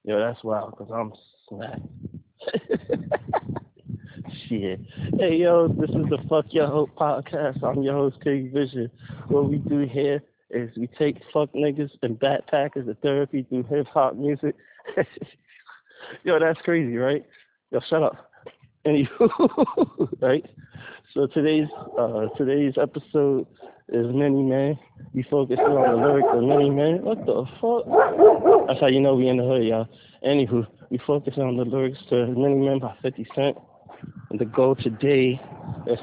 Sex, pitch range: male, 125-145 Hz